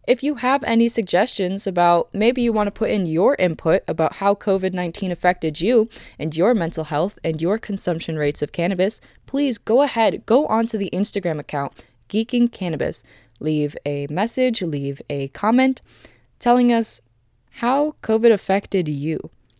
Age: 20-39